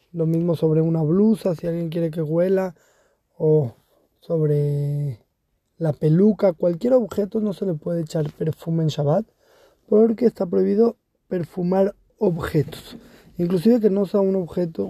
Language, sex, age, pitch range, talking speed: Spanish, male, 20-39, 165-205 Hz, 140 wpm